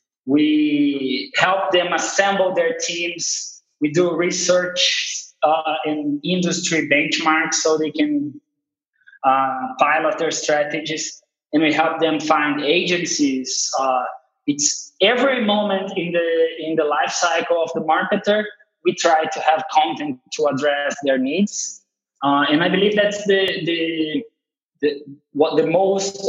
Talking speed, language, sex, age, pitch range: 135 wpm, English, male, 20-39, 145-195 Hz